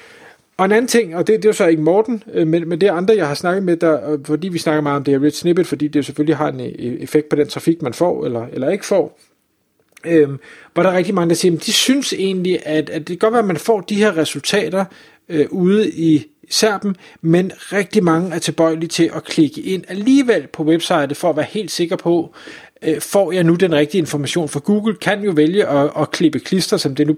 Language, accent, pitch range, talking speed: Danish, native, 150-190 Hz, 240 wpm